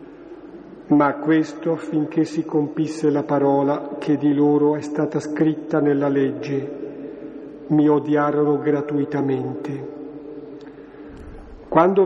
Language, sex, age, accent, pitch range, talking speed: Italian, male, 50-69, native, 145-185 Hz, 95 wpm